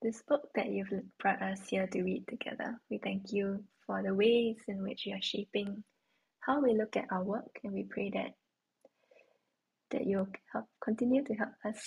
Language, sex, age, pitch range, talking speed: English, female, 10-29, 195-245 Hz, 190 wpm